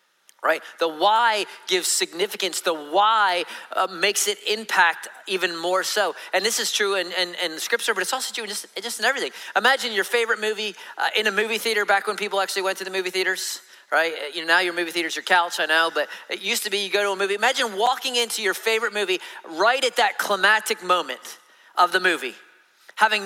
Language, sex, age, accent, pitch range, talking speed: English, male, 40-59, American, 190-235 Hz, 220 wpm